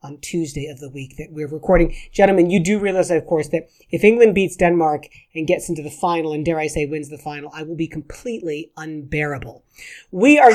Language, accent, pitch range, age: English, American, 155-195 Hz, 40-59